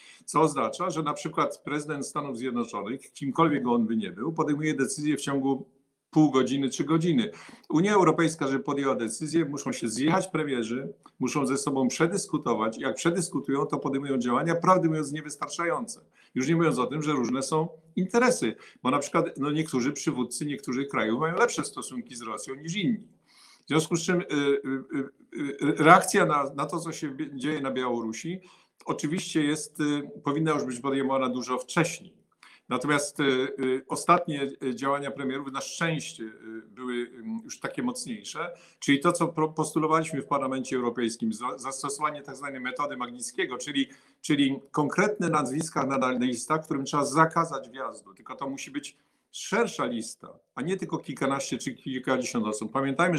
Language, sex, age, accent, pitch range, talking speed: Polish, male, 50-69, native, 135-165 Hz, 150 wpm